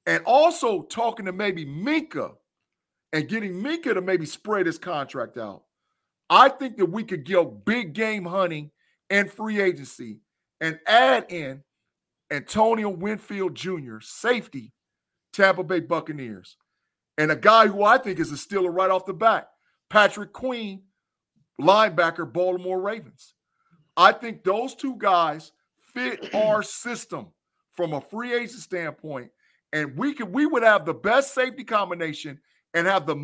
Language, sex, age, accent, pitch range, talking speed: English, male, 50-69, American, 160-220 Hz, 145 wpm